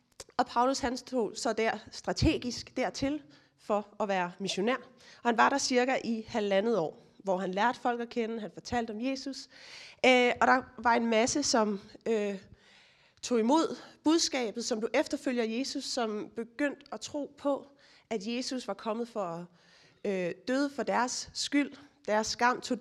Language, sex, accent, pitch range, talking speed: Danish, female, native, 205-255 Hz, 165 wpm